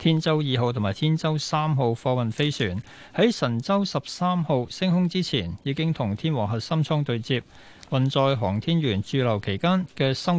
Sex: male